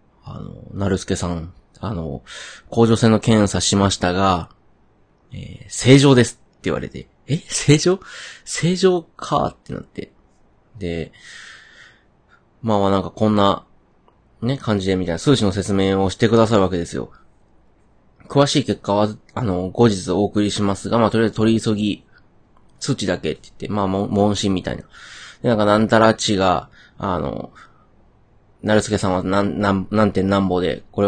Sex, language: male, Japanese